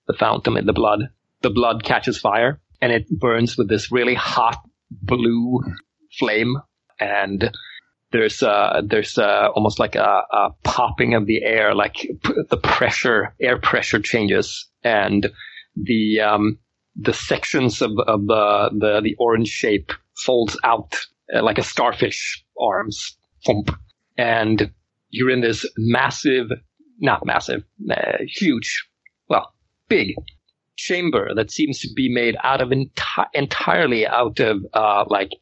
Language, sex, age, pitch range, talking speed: English, male, 30-49, 105-125 Hz, 140 wpm